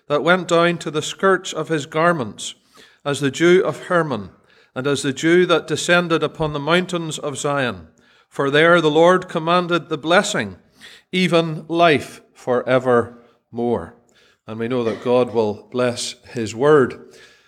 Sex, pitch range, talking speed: male, 135-175 Hz, 150 wpm